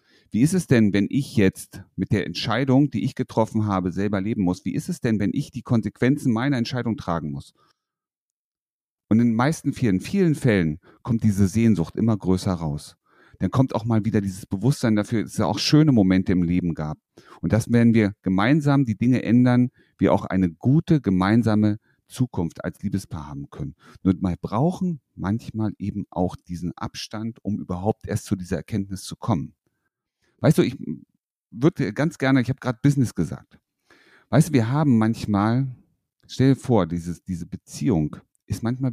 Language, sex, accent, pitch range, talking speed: German, male, German, 95-125 Hz, 175 wpm